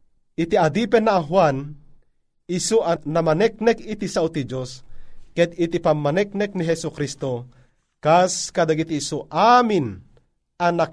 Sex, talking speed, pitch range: male, 125 wpm, 145-185 Hz